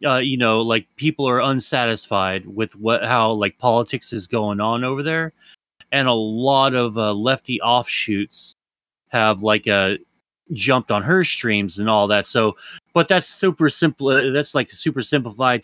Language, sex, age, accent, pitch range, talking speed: English, male, 30-49, American, 105-140 Hz, 170 wpm